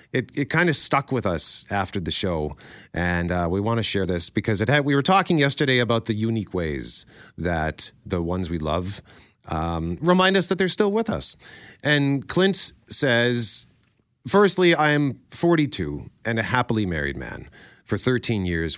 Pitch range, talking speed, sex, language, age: 90-130 Hz, 180 wpm, male, English, 40-59